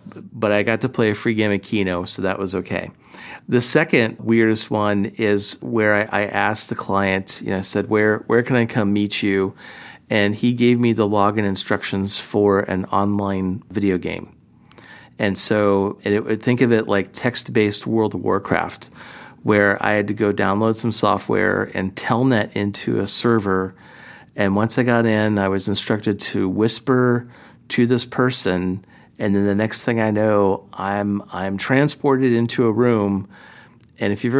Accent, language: American, English